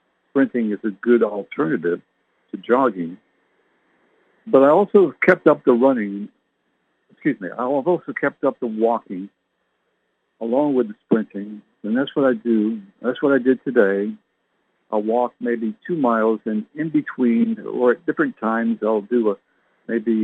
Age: 60-79